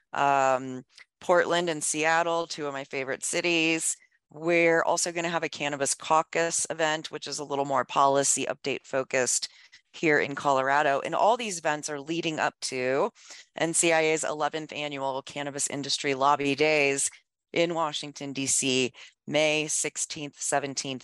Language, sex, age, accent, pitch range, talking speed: English, female, 30-49, American, 140-160 Hz, 145 wpm